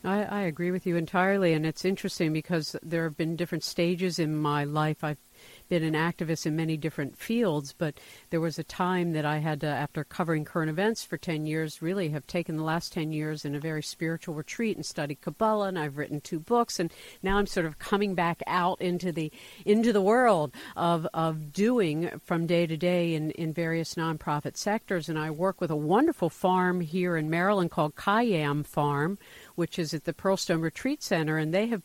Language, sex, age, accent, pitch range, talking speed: English, female, 50-69, American, 155-185 Hz, 205 wpm